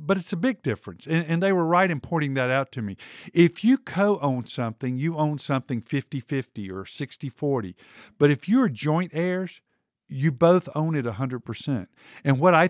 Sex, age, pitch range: male, 50-69, 125-170 Hz